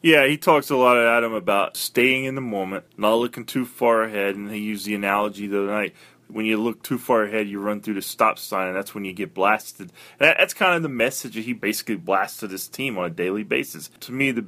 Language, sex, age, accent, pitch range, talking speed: English, male, 20-39, American, 100-120 Hz, 255 wpm